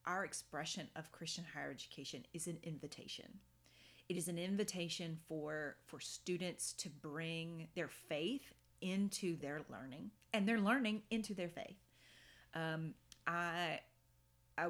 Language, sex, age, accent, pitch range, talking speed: English, female, 30-49, American, 155-200 Hz, 125 wpm